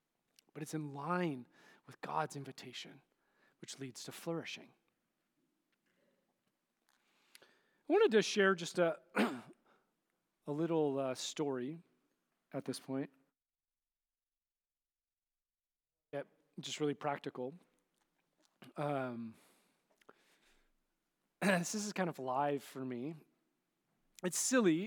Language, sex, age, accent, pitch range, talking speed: English, male, 30-49, American, 145-210 Hz, 90 wpm